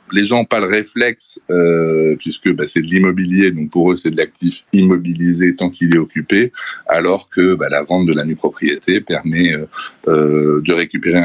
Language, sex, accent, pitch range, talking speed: French, male, French, 80-100 Hz, 195 wpm